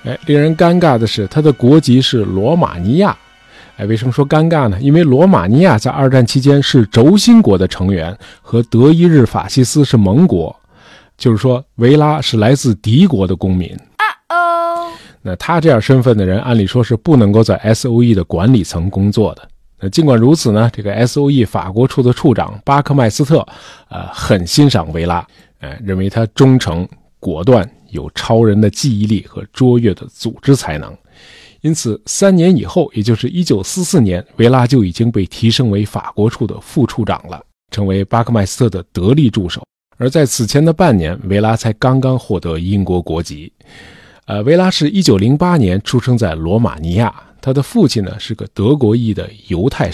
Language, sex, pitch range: Chinese, male, 105-145 Hz